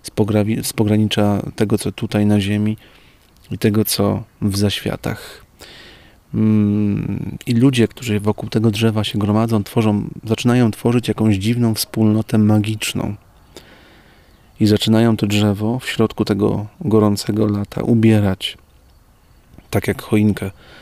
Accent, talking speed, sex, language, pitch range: native, 120 wpm, male, Polish, 100-110 Hz